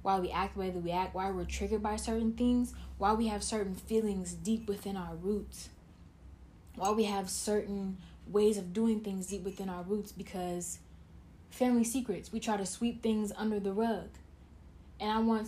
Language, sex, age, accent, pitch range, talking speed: English, female, 10-29, American, 180-210 Hz, 190 wpm